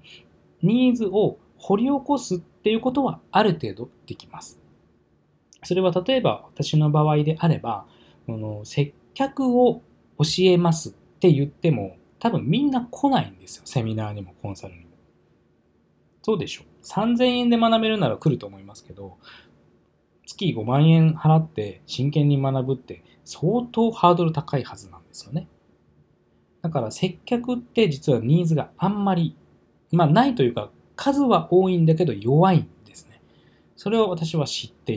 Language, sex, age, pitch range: Japanese, male, 20-39, 120-190 Hz